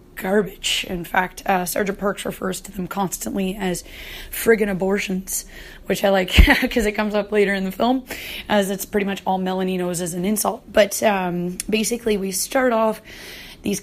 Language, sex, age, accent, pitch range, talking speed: English, female, 20-39, American, 185-215 Hz, 180 wpm